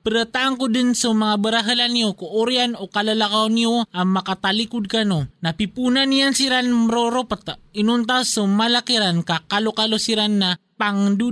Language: English